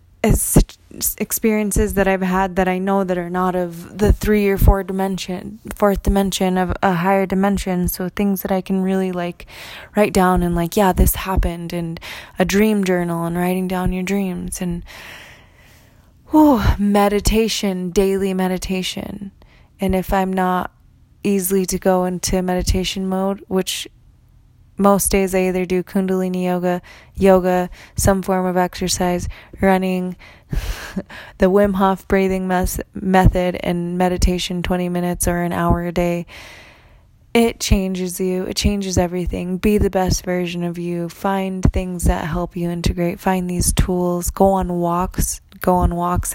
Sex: female